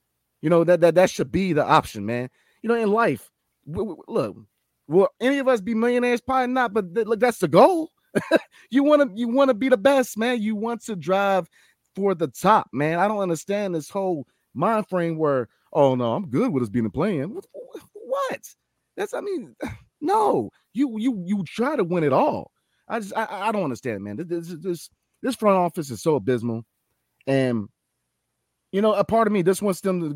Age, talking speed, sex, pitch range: 30-49, 210 wpm, male, 140-210 Hz